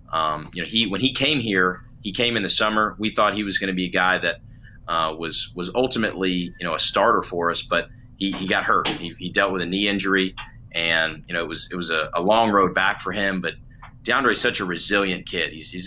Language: English